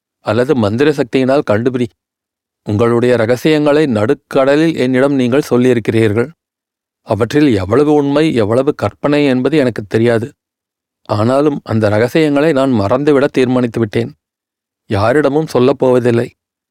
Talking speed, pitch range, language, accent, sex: 95 wpm, 120-145 Hz, Tamil, native, male